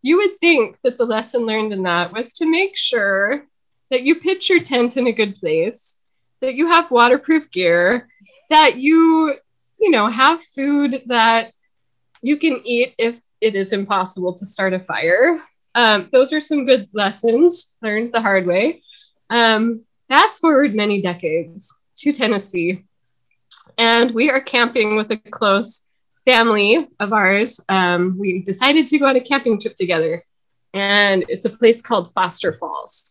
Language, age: English, 20-39